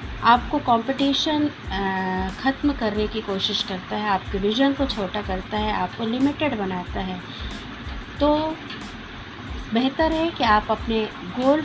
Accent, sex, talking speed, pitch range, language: native, female, 130 wpm, 195-245 Hz, Hindi